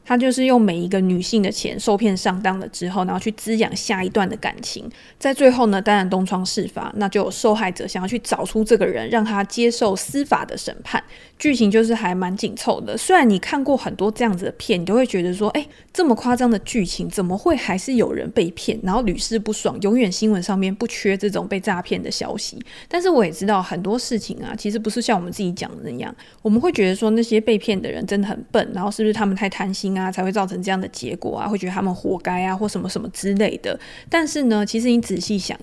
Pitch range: 190-230 Hz